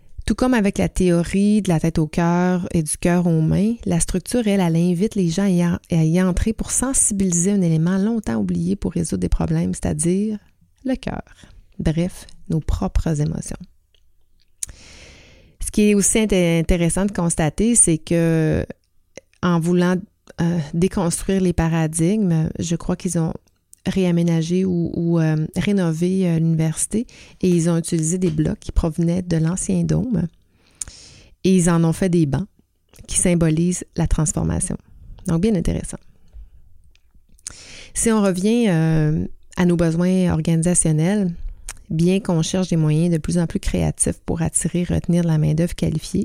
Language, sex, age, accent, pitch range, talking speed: French, female, 30-49, Canadian, 160-185 Hz, 150 wpm